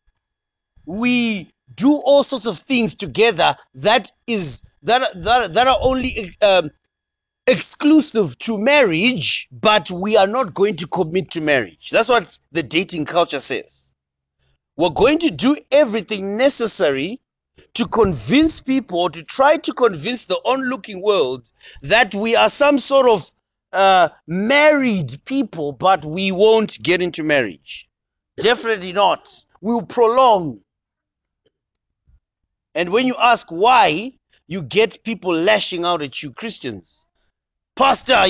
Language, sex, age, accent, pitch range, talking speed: English, male, 30-49, South African, 170-265 Hz, 130 wpm